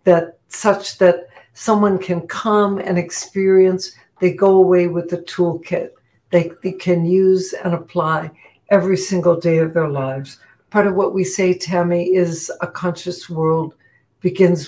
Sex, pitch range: female, 165-185 Hz